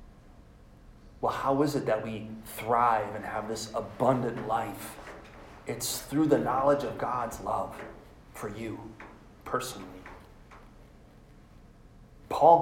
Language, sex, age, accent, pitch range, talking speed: English, male, 30-49, American, 105-135 Hz, 110 wpm